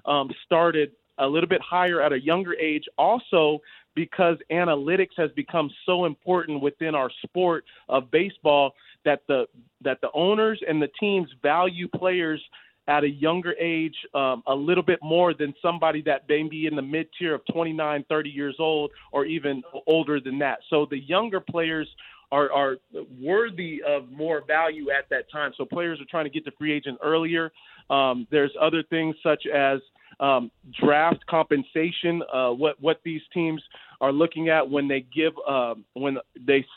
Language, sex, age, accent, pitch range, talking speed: English, male, 30-49, American, 145-170 Hz, 170 wpm